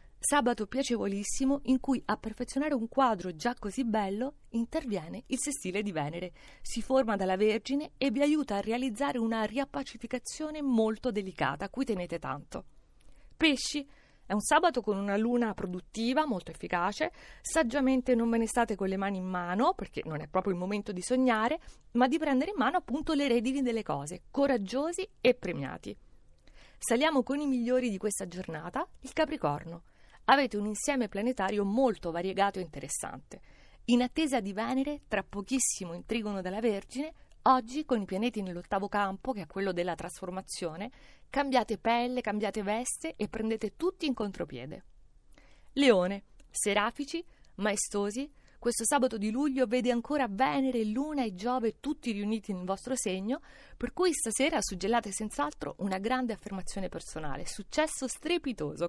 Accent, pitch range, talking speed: native, 195-265 Hz, 150 wpm